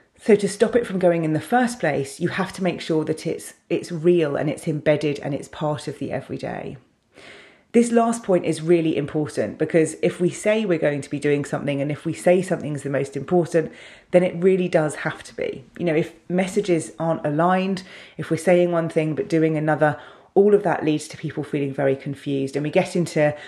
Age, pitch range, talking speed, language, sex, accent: 30-49, 150-175 Hz, 220 wpm, English, female, British